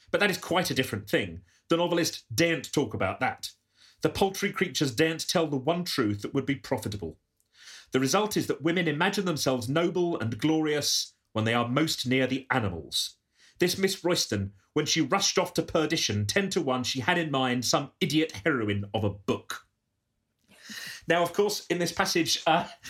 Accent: British